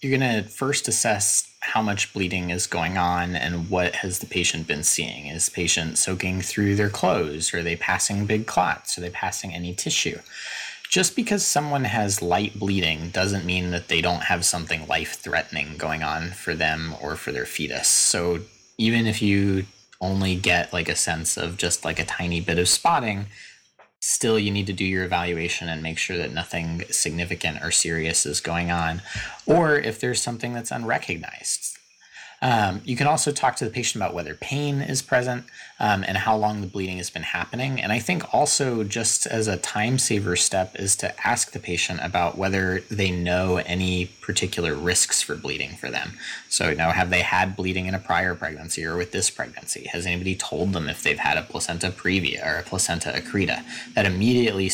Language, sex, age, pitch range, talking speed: English, male, 20-39, 85-105 Hz, 190 wpm